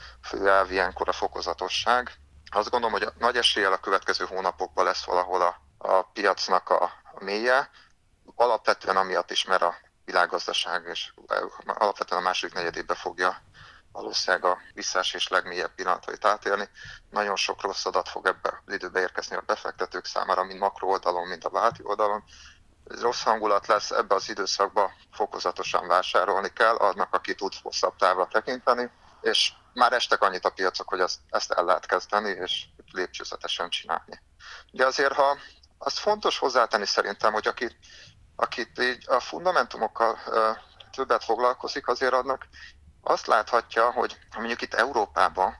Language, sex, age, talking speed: Hungarian, male, 30-49, 145 wpm